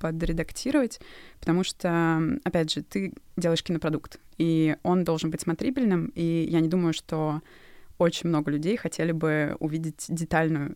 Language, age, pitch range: Russian, 20-39, 160-180 Hz